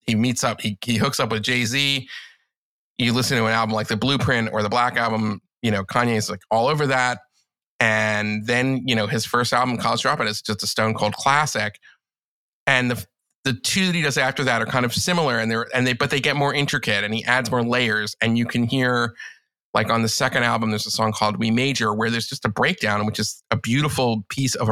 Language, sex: English, male